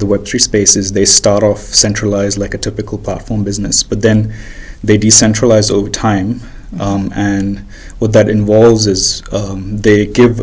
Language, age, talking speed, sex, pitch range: English, 20-39, 155 wpm, male, 100-110 Hz